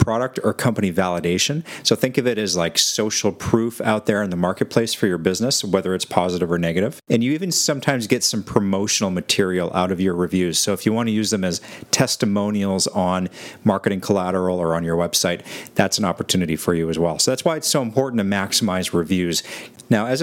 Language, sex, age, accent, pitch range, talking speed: English, male, 40-59, American, 90-115 Hz, 210 wpm